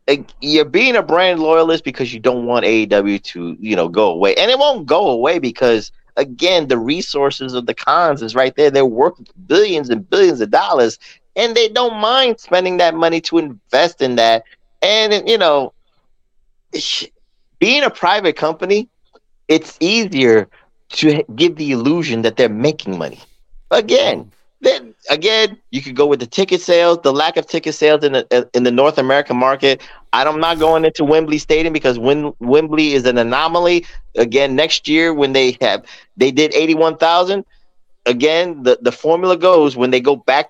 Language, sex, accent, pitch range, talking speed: English, male, American, 135-190 Hz, 175 wpm